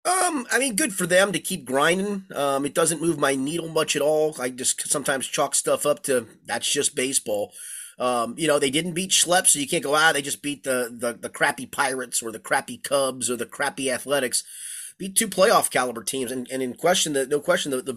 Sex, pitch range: male, 130-165 Hz